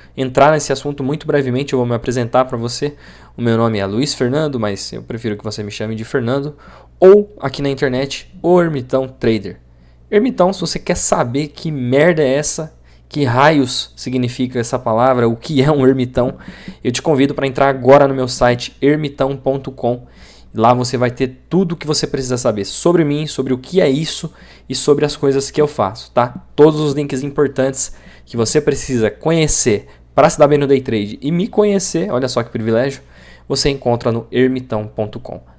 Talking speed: 190 wpm